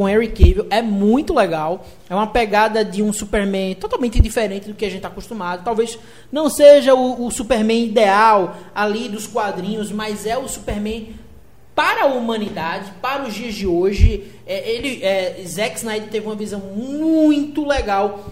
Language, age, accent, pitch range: Portuguese, 20-39, Brazilian, 190-235 Hz